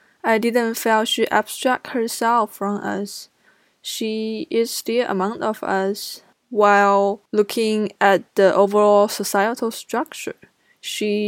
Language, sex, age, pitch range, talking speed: English, female, 10-29, 190-220 Hz, 115 wpm